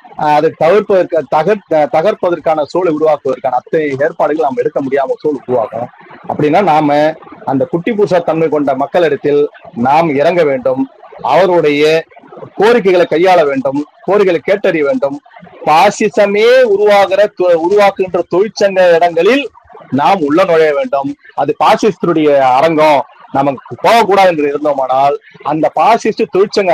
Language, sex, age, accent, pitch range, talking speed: Tamil, male, 40-59, native, 155-205 Hz, 110 wpm